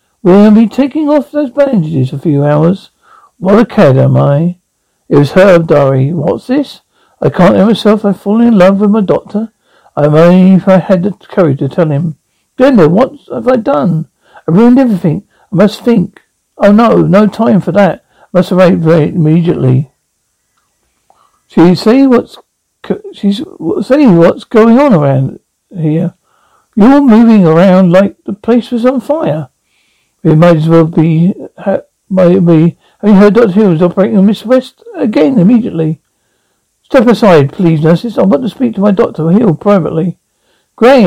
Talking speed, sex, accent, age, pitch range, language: 170 wpm, male, British, 60-79, 160-225 Hz, English